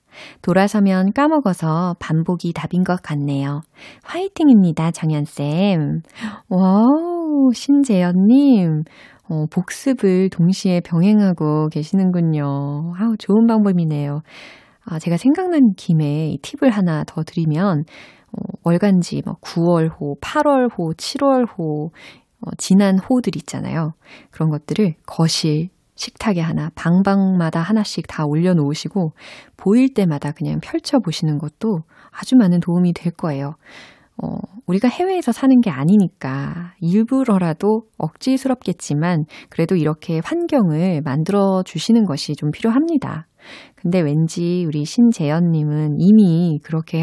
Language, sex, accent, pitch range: Korean, female, native, 160-220 Hz